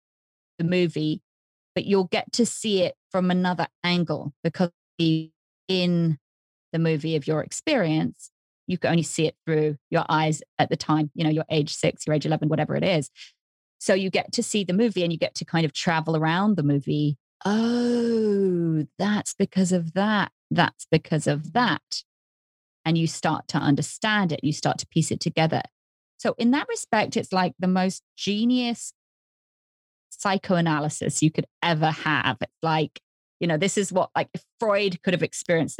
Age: 30-49